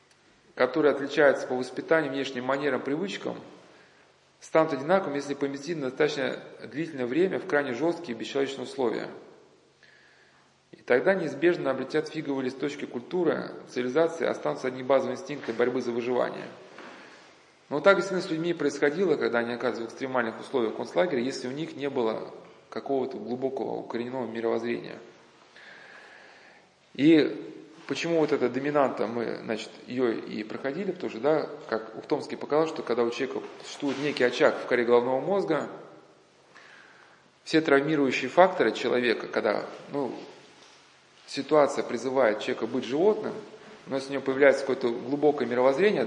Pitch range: 125-160 Hz